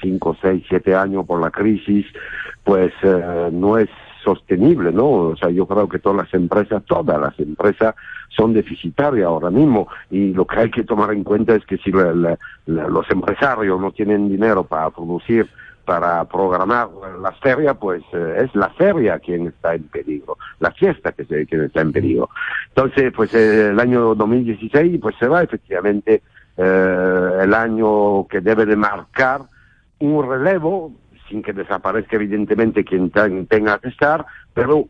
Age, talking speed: 60-79, 170 wpm